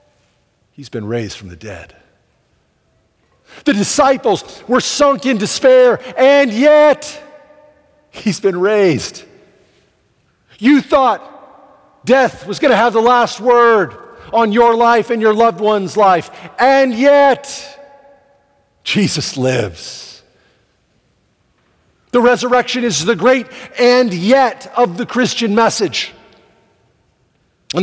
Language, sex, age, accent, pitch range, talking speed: English, male, 50-69, American, 185-255 Hz, 110 wpm